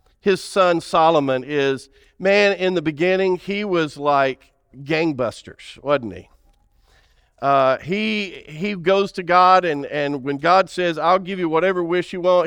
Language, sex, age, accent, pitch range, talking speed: English, male, 50-69, American, 130-195 Hz, 155 wpm